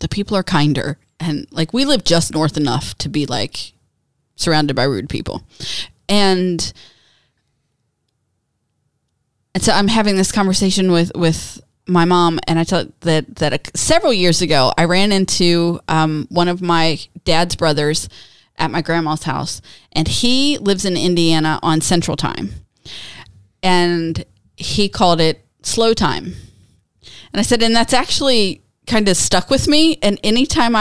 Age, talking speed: 20-39, 150 wpm